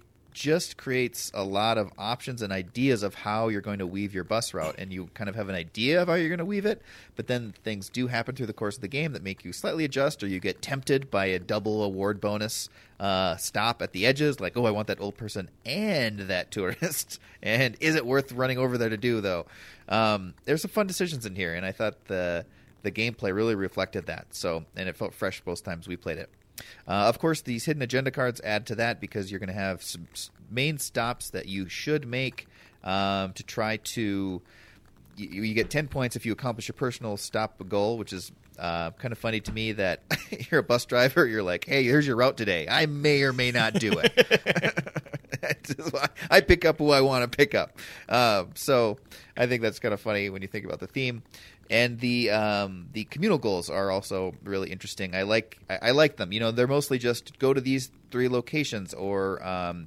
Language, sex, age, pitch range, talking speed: English, male, 30-49, 100-130 Hz, 225 wpm